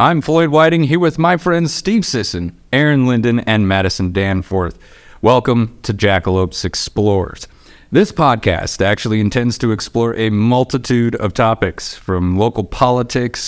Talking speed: 140 wpm